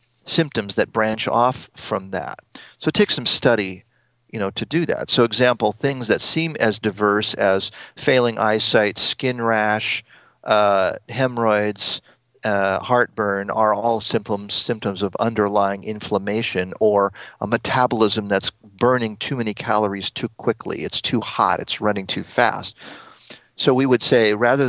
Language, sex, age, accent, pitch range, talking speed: English, male, 40-59, American, 105-120 Hz, 150 wpm